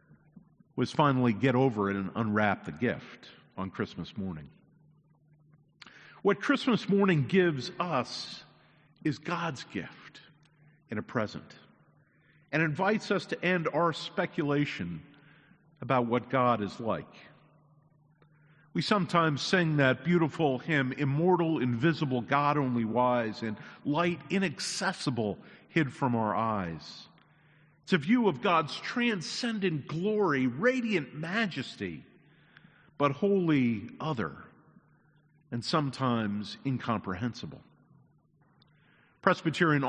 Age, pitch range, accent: 50-69, 130-175 Hz, American